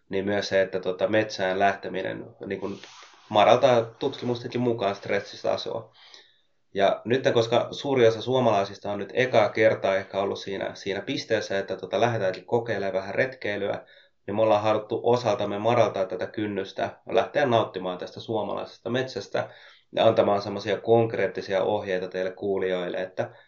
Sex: male